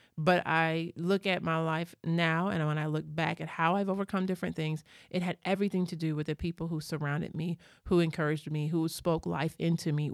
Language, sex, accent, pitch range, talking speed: English, male, American, 155-185 Hz, 220 wpm